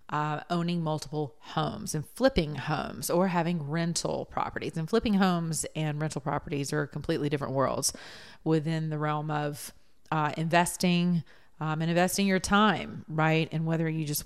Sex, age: female, 30-49